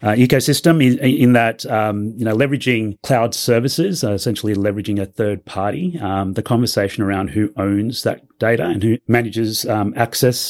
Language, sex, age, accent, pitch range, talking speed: English, male, 30-49, Australian, 95-115 Hz, 170 wpm